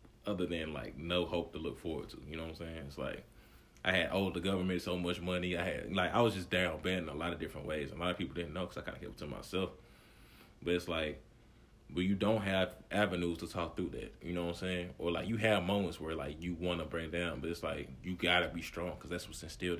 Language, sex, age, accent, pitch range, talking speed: English, male, 30-49, American, 85-95 Hz, 280 wpm